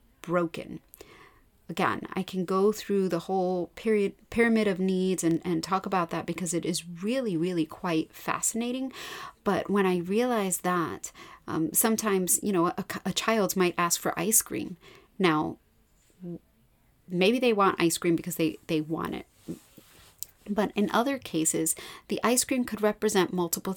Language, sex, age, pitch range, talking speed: English, female, 30-49, 175-225 Hz, 155 wpm